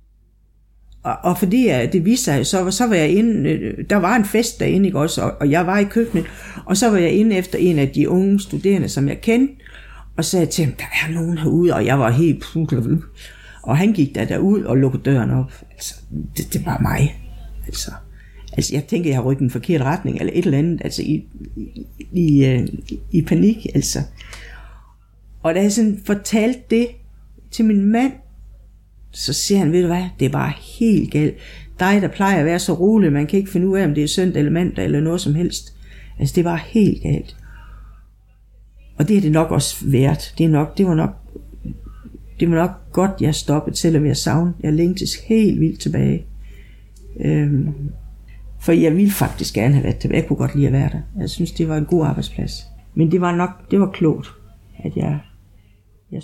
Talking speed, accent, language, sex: 195 wpm, native, Danish, female